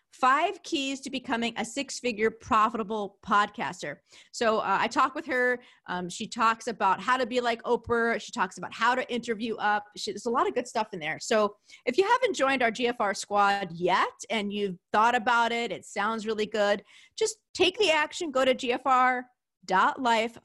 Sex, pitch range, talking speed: female, 195-255 Hz, 185 wpm